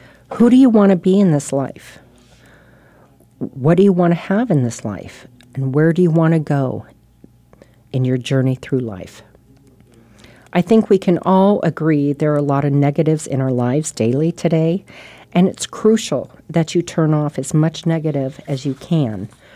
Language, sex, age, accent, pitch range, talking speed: English, female, 40-59, American, 130-175 Hz, 185 wpm